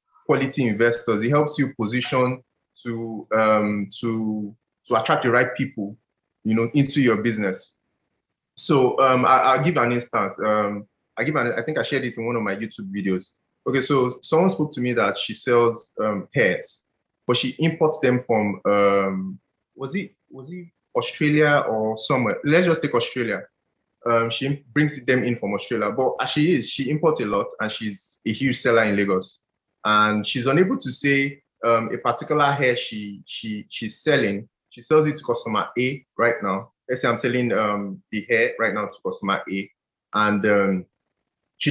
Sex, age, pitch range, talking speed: male, 20-39, 110-140 Hz, 185 wpm